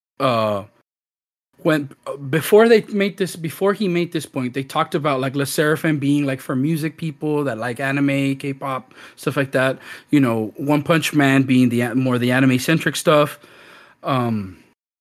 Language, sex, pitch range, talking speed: English, male, 130-160 Hz, 170 wpm